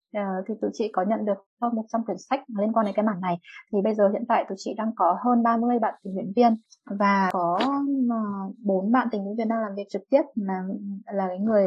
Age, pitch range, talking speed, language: 20-39, 195-230 Hz, 240 wpm, Vietnamese